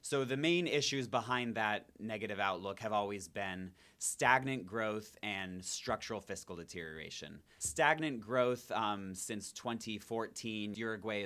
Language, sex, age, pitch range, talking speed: English, male, 30-49, 95-110 Hz, 125 wpm